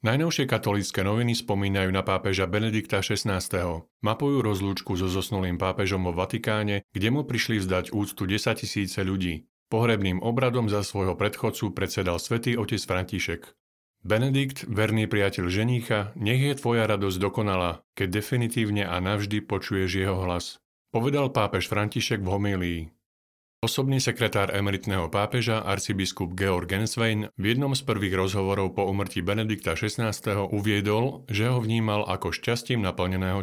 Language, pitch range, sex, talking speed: Slovak, 95-115 Hz, male, 135 wpm